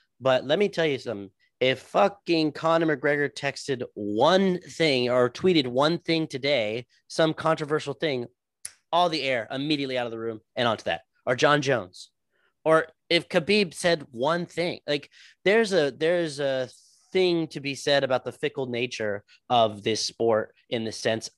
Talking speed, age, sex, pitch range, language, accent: 170 wpm, 30-49, male, 130-170 Hz, English, American